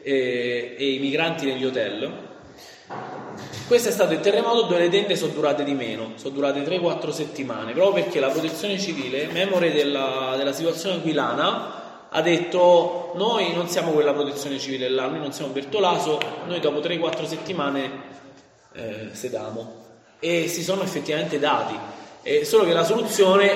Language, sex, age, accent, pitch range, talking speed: Italian, male, 20-39, native, 130-175 Hz, 155 wpm